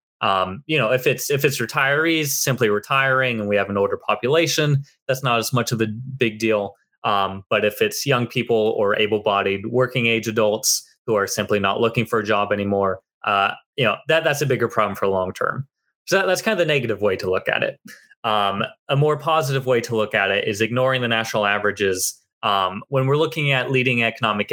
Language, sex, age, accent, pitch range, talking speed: English, male, 20-39, American, 105-140 Hz, 215 wpm